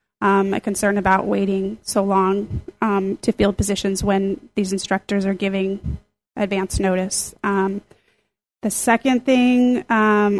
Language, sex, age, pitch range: English, female, 30-49, 200-225 Hz